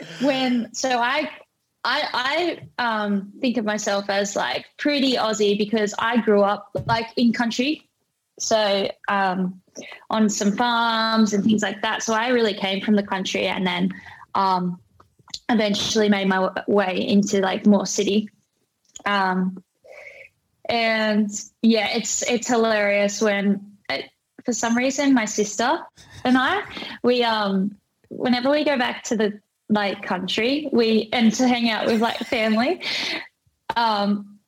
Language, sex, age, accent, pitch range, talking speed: English, female, 10-29, Australian, 205-275 Hz, 145 wpm